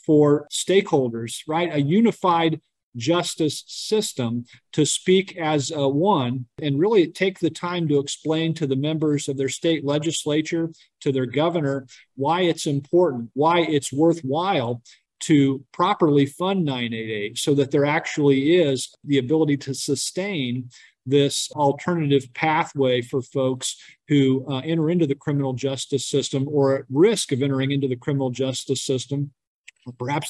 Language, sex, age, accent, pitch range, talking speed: English, male, 50-69, American, 135-160 Hz, 145 wpm